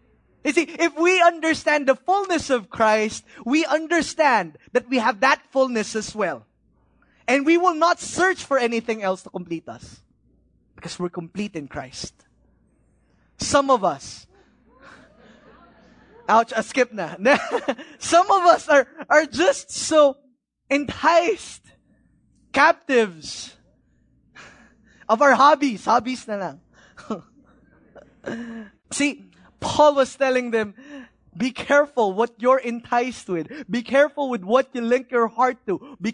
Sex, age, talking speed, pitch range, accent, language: male, 20-39, 130 wpm, 220-290 Hz, Filipino, English